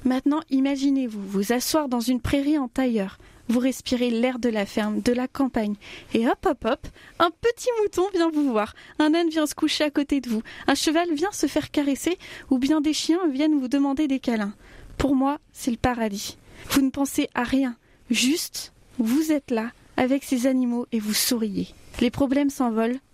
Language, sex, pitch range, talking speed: French, female, 245-300 Hz, 195 wpm